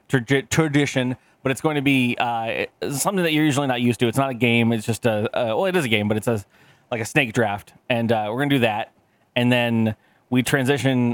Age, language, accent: 20-39, English, American